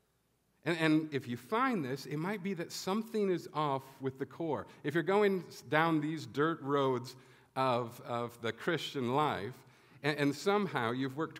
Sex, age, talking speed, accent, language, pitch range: male, 50-69, 175 wpm, American, English, 125-155 Hz